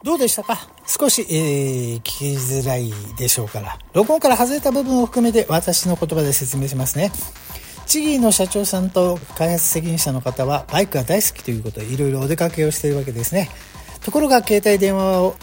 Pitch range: 130-210 Hz